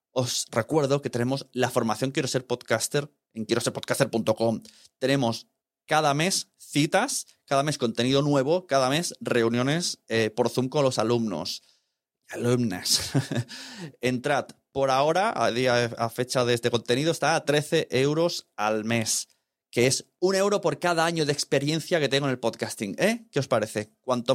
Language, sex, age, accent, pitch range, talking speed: Spanish, male, 30-49, Spanish, 120-160 Hz, 160 wpm